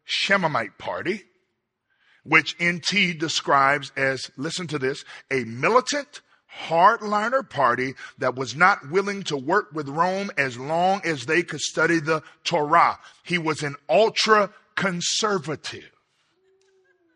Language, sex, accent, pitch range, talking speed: English, male, American, 130-180 Hz, 120 wpm